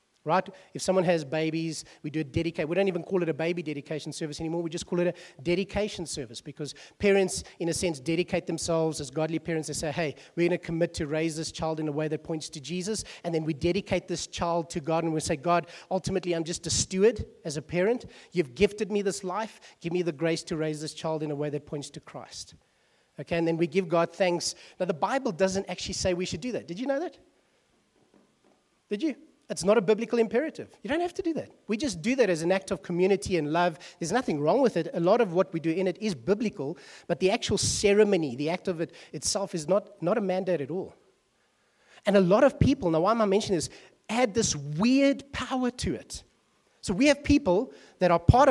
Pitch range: 165-215 Hz